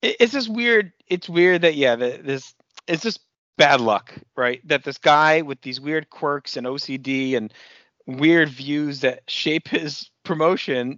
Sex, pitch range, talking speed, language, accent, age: male, 115-145 Hz, 160 wpm, English, American, 30-49